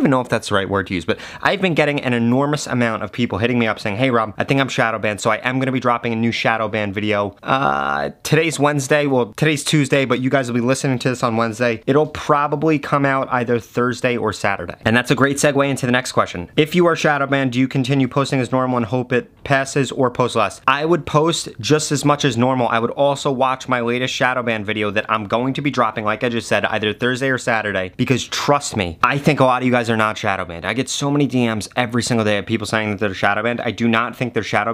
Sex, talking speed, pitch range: male, 280 wpm, 115-140 Hz